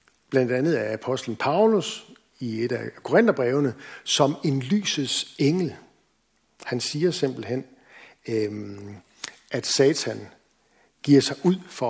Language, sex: Danish, male